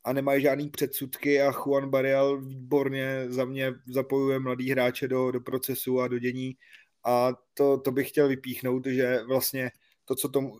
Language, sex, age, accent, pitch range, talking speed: Czech, male, 20-39, native, 125-135 Hz, 170 wpm